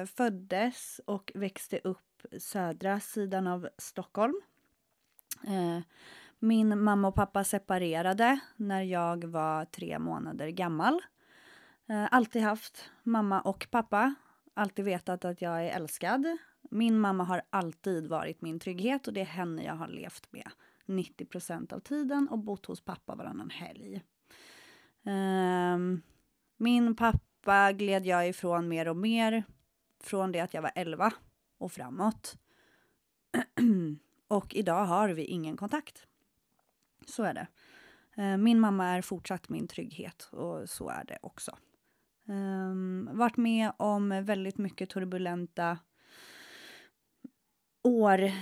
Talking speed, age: 120 wpm, 30-49